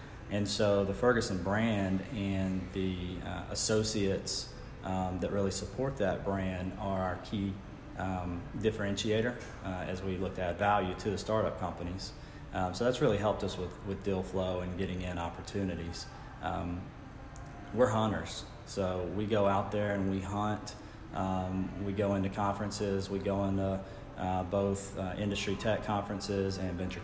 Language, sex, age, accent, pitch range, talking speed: English, male, 30-49, American, 95-110 Hz, 160 wpm